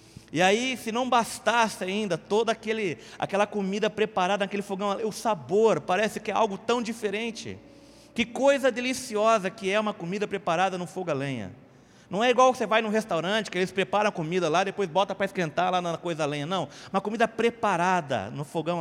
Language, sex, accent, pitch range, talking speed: Portuguese, male, Brazilian, 155-210 Hz, 200 wpm